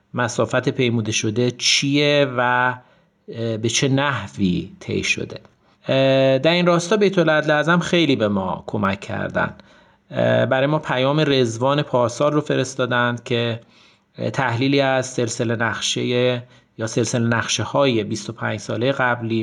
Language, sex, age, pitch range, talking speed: Persian, male, 30-49, 115-130 Hz, 125 wpm